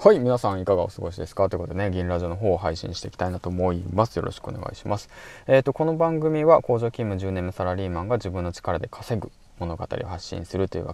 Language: Japanese